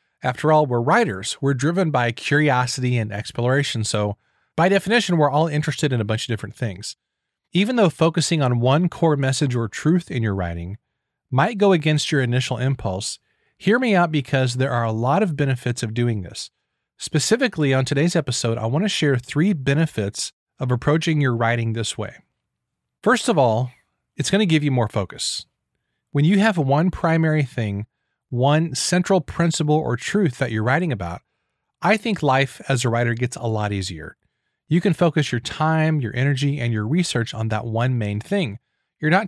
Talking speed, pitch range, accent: 180 wpm, 120-160 Hz, American